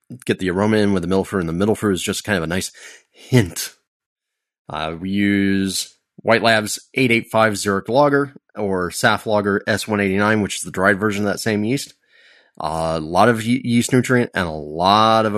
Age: 30-49